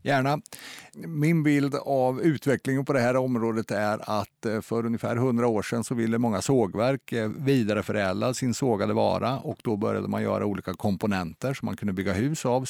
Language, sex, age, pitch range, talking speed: Swedish, male, 50-69, 100-125 Hz, 180 wpm